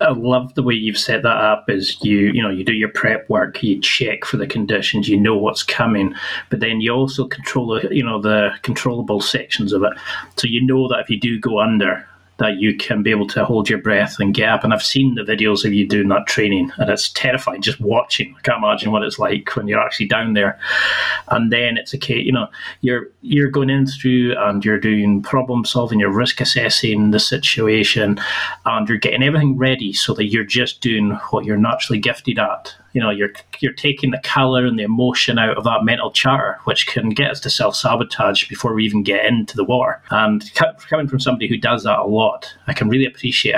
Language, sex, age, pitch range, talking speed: English, male, 30-49, 105-135 Hz, 225 wpm